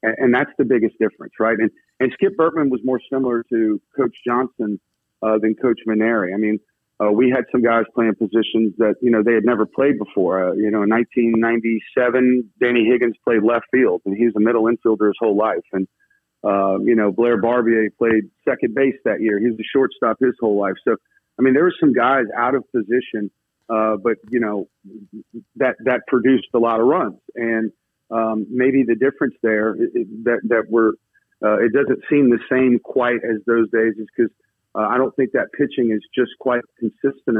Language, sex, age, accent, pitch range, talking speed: English, male, 40-59, American, 110-125 Hz, 200 wpm